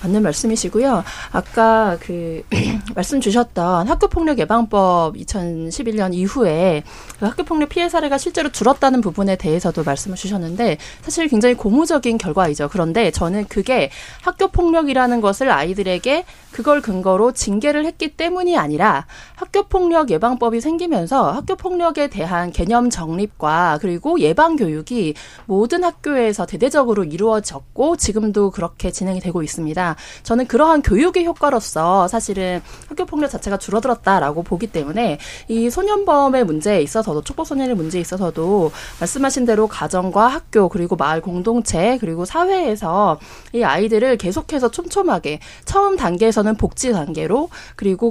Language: Korean